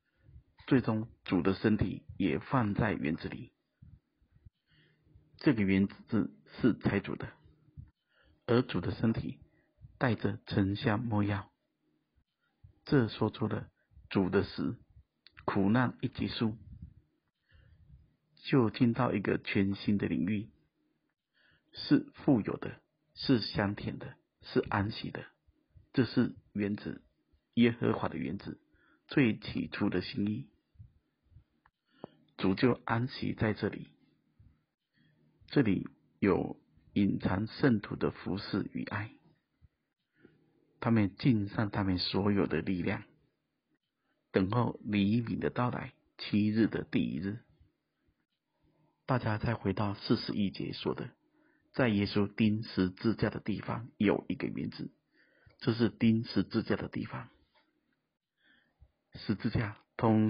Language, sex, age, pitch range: Chinese, male, 50-69, 100-115 Hz